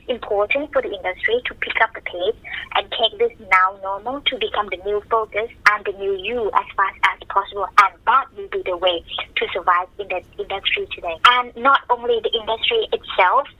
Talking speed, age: 200 wpm, 20-39